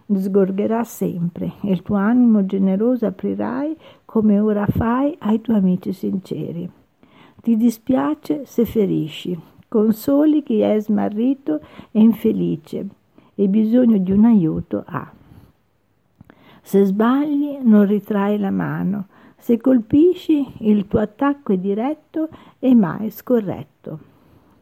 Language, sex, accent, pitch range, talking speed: Italian, female, native, 195-255 Hz, 115 wpm